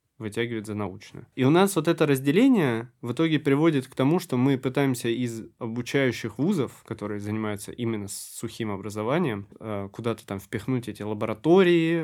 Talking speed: 150 wpm